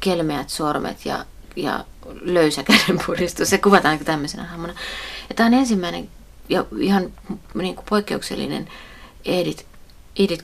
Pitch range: 155-195 Hz